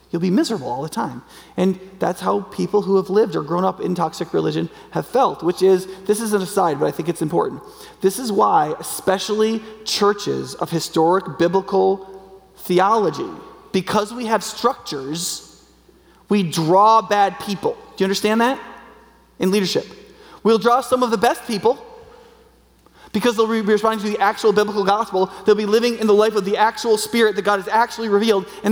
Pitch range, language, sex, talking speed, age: 190-240 Hz, English, male, 180 wpm, 30-49